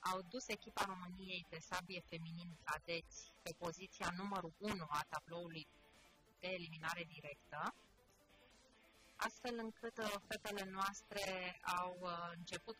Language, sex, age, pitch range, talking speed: Romanian, female, 30-49, 165-195 Hz, 110 wpm